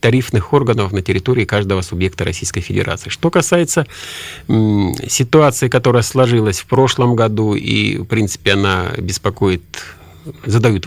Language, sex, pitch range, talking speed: Russian, male, 95-125 Hz, 125 wpm